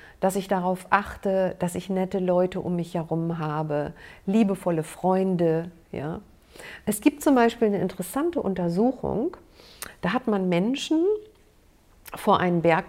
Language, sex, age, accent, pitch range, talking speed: German, female, 50-69, German, 175-225 Hz, 130 wpm